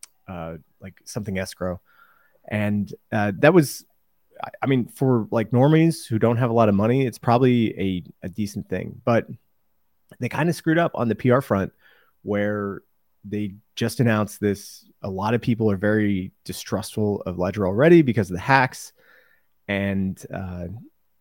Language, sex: English, male